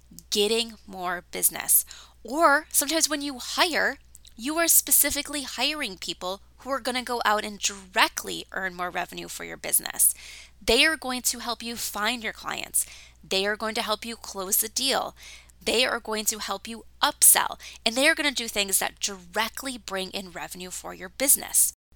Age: 10-29